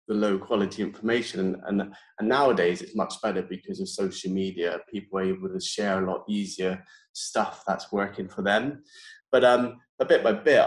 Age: 20-39